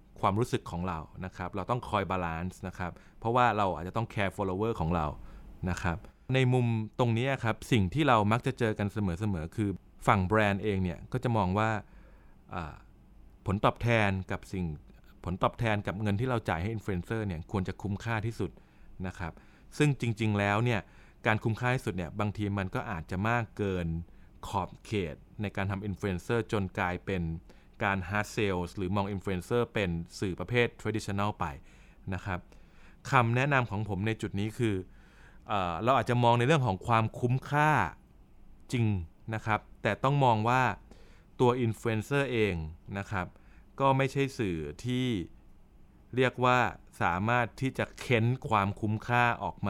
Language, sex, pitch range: Thai, male, 95-120 Hz